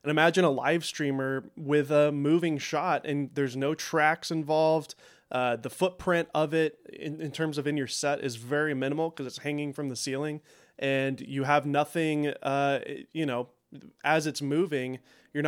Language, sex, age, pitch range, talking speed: English, male, 20-39, 140-185 Hz, 180 wpm